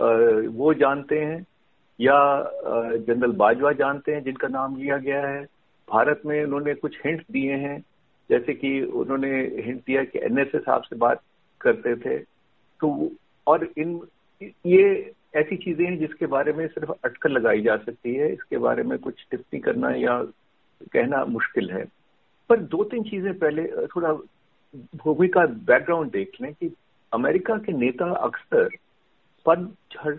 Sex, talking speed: male, 150 wpm